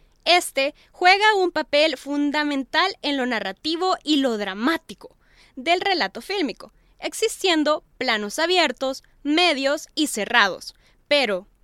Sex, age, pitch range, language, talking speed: female, 10-29, 235-340 Hz, Spanish, 110 wpm